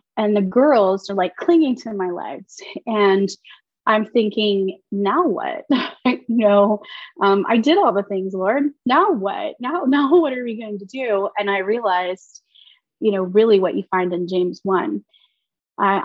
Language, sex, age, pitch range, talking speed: English, female, 20-39, 195-245 Hz, 170 wpm